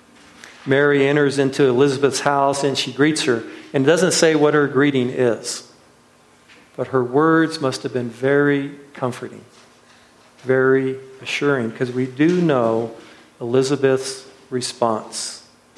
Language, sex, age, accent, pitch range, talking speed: English, male, 50-69, American, 125-145 Hz, 125 wpm